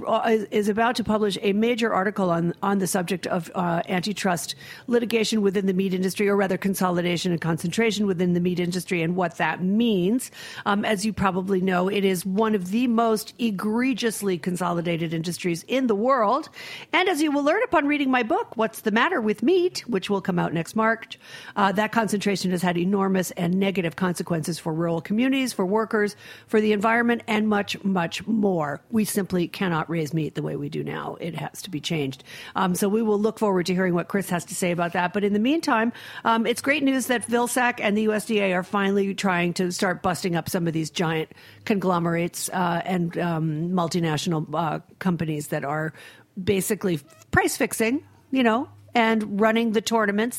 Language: English